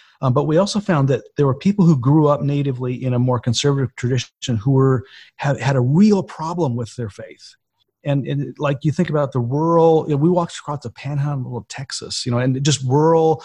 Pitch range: 130-165 Hz